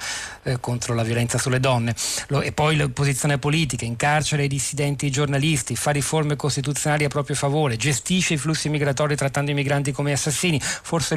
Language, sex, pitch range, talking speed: Italian, male, 120-145 Hz, 170 wpm